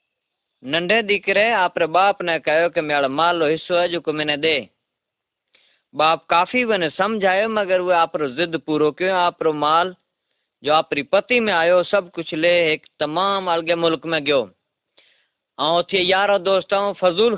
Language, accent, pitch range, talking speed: Hindi, native, 170-205 Hz, 140 wpm